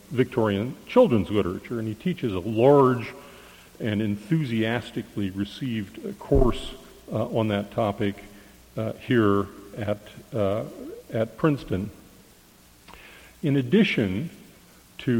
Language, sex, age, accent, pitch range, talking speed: English, male, 50-69, American, 100-120 Hz, 100 wpm